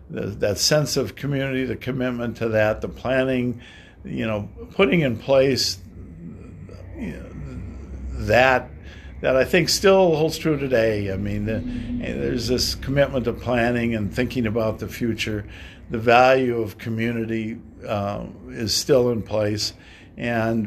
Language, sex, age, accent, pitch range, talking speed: English, male, 60-79, American, 105-125 Hz, 140 wpm